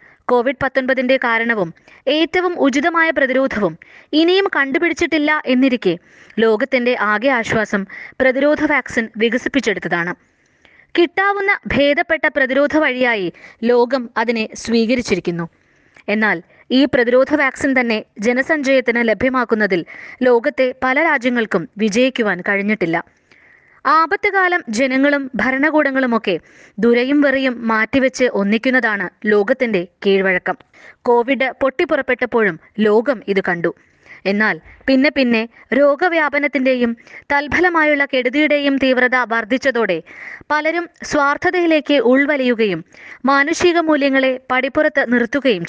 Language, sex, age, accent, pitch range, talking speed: Malayalam, female, 20-39, native, 225-290 Hz, 85 wpm